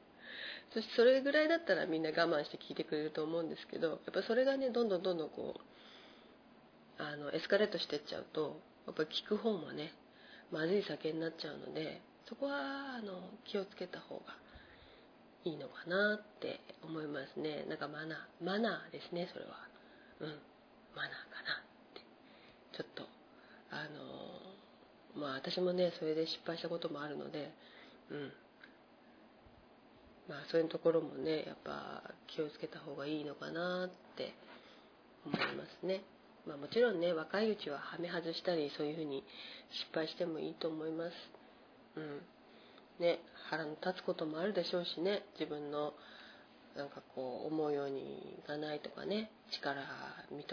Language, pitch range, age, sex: Japanese, 155-200 Hz, 40-59, female